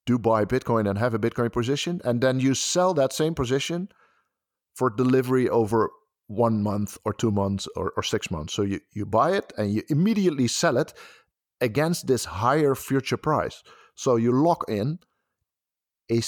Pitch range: 105-135 Hz